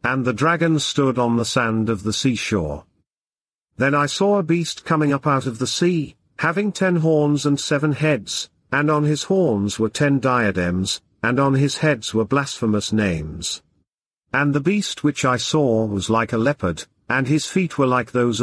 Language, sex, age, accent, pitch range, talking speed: English, male, 50-69, British, 110-145 Hz, 185 wpm